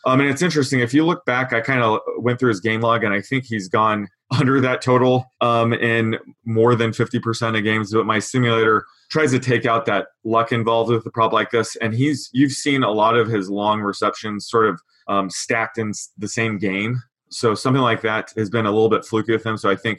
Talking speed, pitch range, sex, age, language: 240 wpm, 110-125 Hz, male, 20-39, English